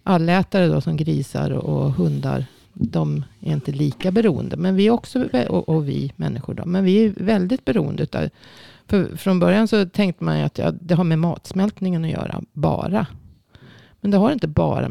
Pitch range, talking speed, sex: 140-180 Hz, 180 wpm, female